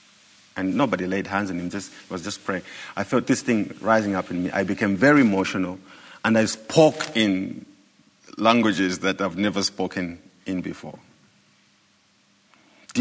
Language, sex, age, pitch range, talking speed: English, male, 50-69, 95-135 Hz, 155 wpm